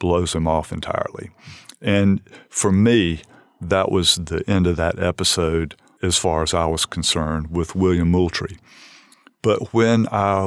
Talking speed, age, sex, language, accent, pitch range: 150 wpm, 50-69, male, English, American, 85-100 Hz